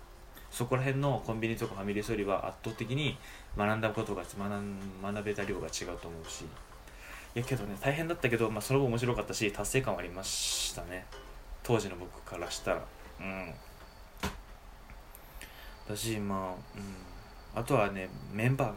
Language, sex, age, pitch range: Japanese, male, 20-39, 95-120 Hz